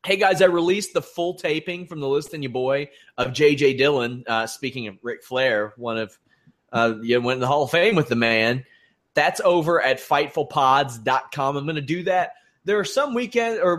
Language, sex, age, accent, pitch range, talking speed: English, male, 30-49, American, 125-170 Hz, 210 wpm